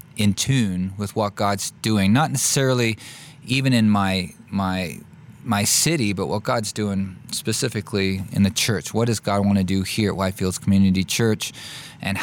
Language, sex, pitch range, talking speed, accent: English, male, 95-115 Hz, 165 wpm, American